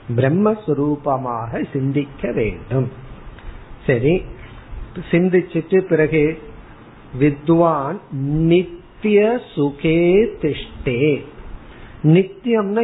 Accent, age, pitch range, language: native, 50-69, 135-180 Hz, Tamil